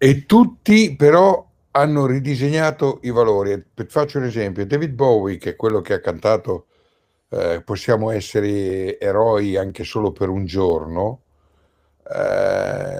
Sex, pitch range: male, 95-145 Hz